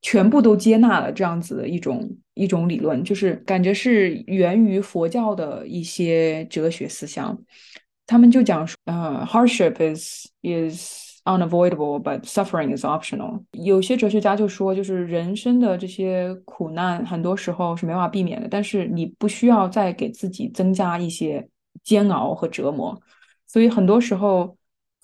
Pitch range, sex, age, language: 175-220 Hz, female, 20-39, Chinese